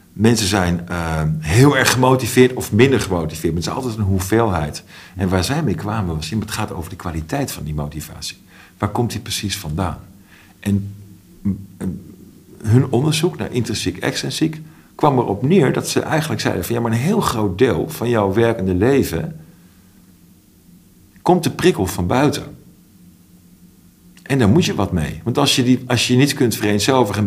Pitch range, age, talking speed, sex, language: 90-115 Hz, 50-69, 175 wpm, male, Dutch